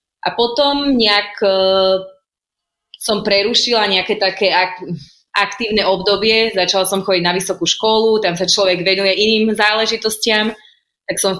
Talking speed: 125 wpm